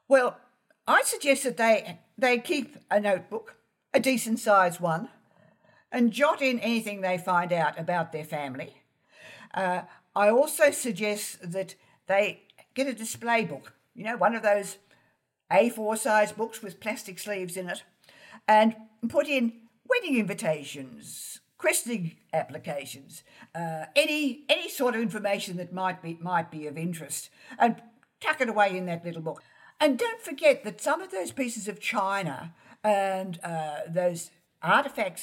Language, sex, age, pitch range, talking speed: English, female, 60-79, 180-260 Hz, 150 wpm